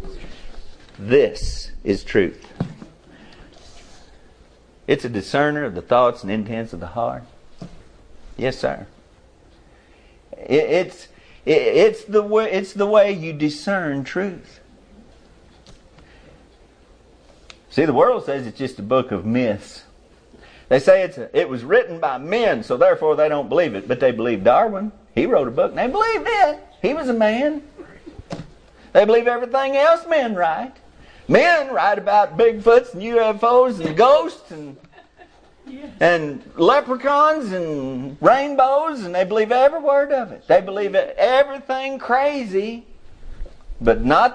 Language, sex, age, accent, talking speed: English, male, 50-69, American, 135 wpm